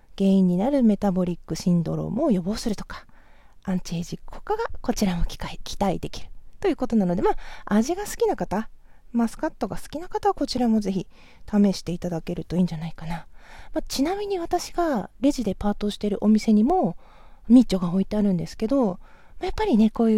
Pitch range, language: 190-285 Hz, Japanese